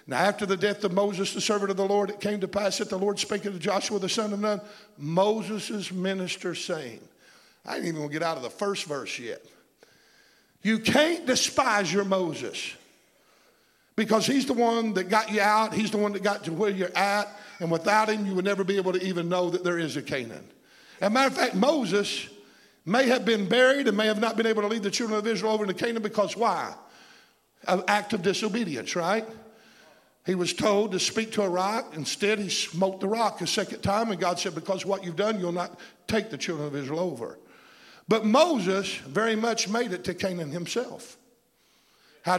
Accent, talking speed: American, 210 wpm